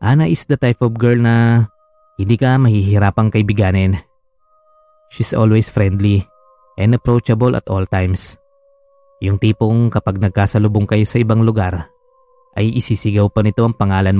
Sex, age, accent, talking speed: male, 20-39, native, 140 wpm